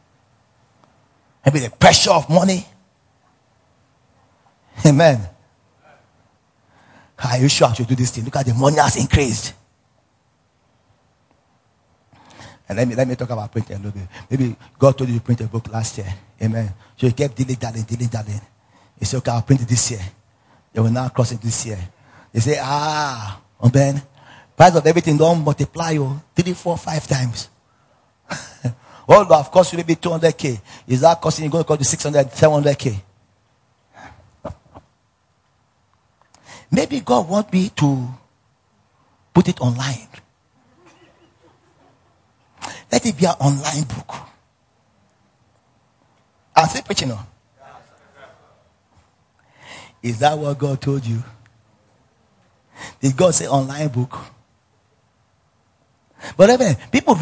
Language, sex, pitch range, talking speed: English, male, 115-145 Hz, 135 wpm